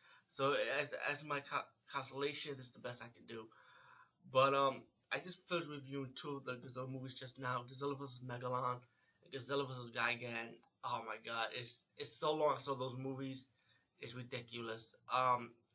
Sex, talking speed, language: male, 175 wpm, English